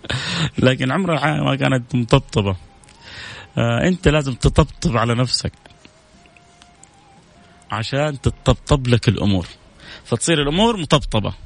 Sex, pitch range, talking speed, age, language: male, 115-150 Hz, 95 wpm, 30-49, Arabic